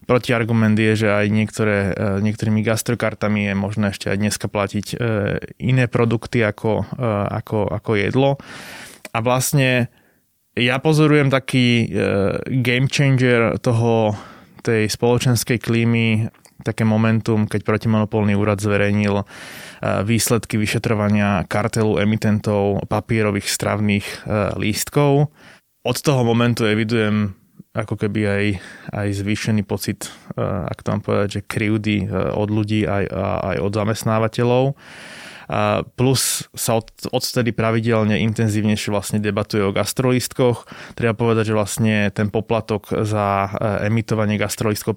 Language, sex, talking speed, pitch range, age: Slovak, male, 110 wpm, 105-115 Hz, 20-39